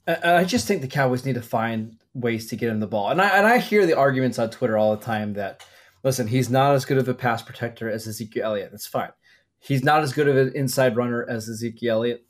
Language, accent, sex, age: English, American, male, 20-39